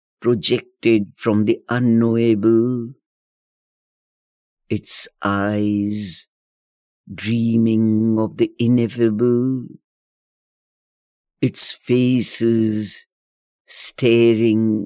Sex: male